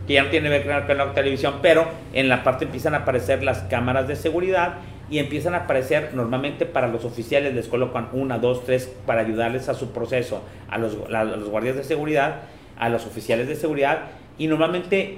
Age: 40-59